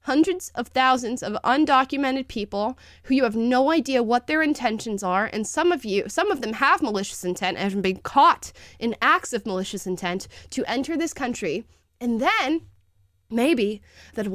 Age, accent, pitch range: 20-39, American, 190-250 Hz